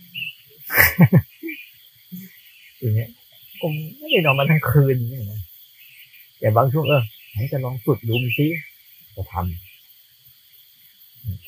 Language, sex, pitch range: Thai, male, 115-145 Hz